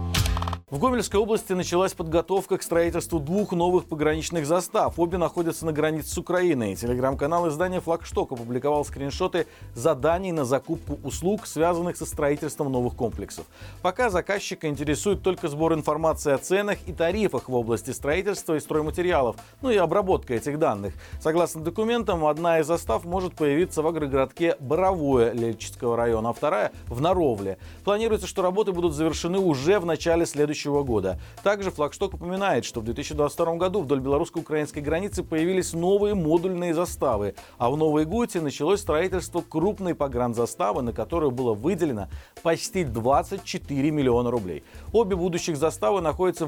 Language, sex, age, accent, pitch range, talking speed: Russian, male, 40-59, native, 135-180 Hz, 145 wpm